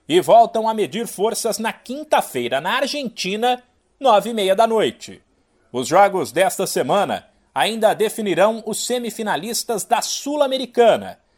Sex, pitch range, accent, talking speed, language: male, 210-255 Hz, Brazilian, 115 wpm, Portuguese